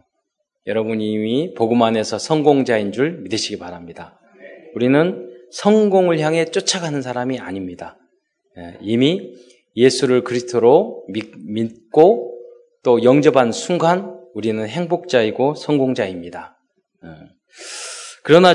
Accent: native